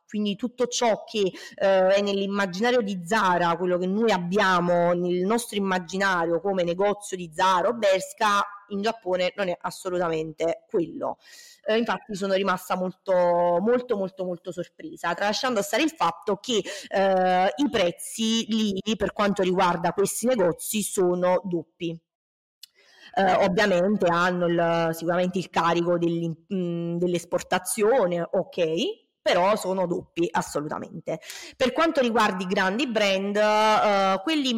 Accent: native